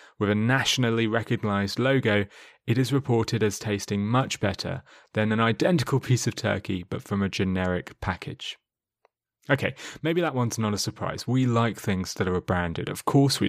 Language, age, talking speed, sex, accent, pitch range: English, 30-49, 175 wpm, male, British, 100-130 Hz